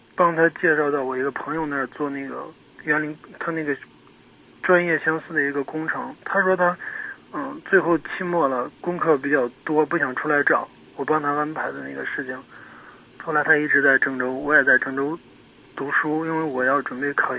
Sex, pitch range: male, 140-170 Hz